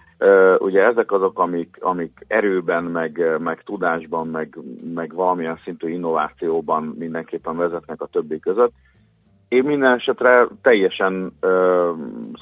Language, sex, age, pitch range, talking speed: Hungarian, male, 40-59, 80-125 Hz, 120 wpm